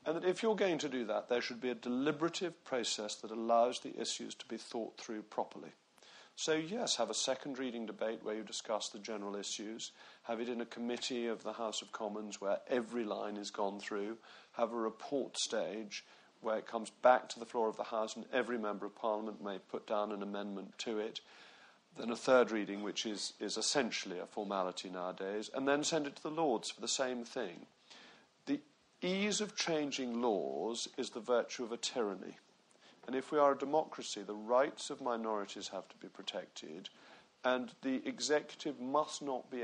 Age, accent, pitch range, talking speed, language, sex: 40-59, British, 105-135 Hz, 195 wpm, English, male